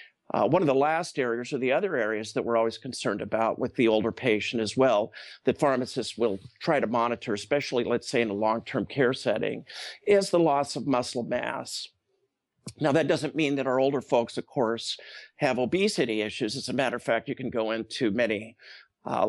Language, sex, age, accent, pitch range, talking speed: English, male, 50-69, American, 110-135 Hz, 200 wpm